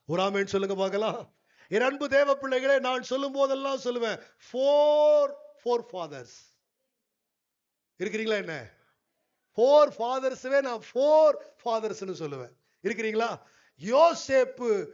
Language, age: Tamil, 50-69